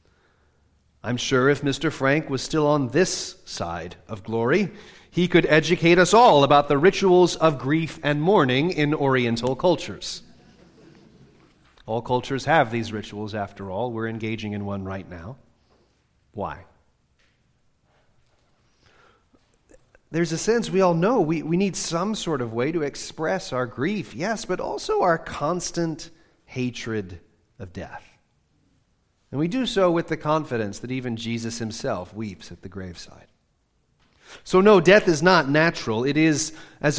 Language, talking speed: English, 145 wpm